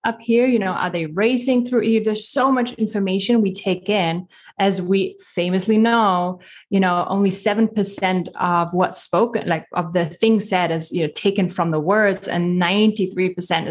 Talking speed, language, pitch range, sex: 185 wpm, English, 175-215 Hz, female